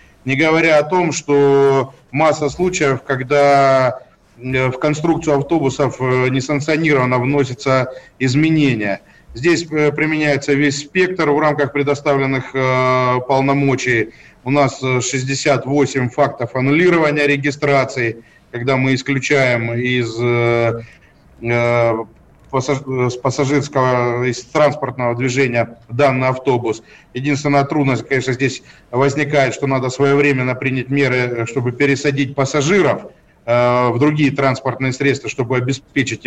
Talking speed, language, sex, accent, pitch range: 100 wpm, Russian, male, native, 125-145 Hz